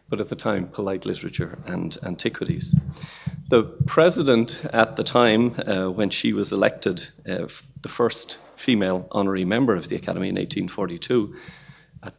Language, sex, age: English, male, 40-59